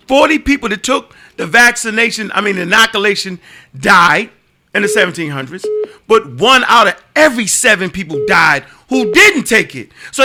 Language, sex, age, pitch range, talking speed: English, male, 40-59, 210-290 Hz, 150 wpm